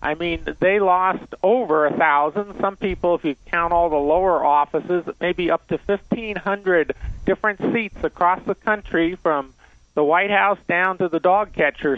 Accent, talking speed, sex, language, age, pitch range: American, 170 wpm, male, English, 50-69, 170-205 Hz